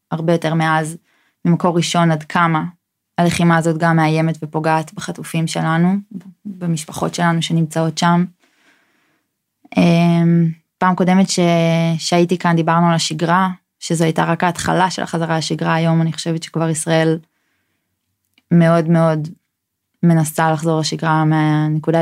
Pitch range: 160-180 Hz